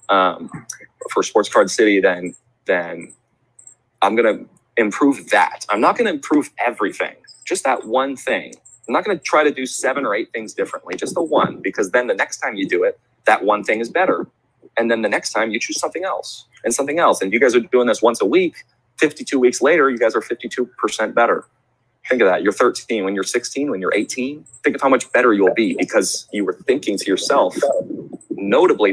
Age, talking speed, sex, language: 30-49, 210 wpm, male, English